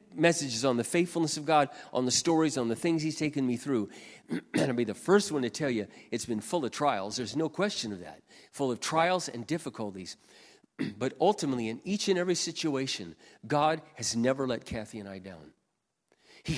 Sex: male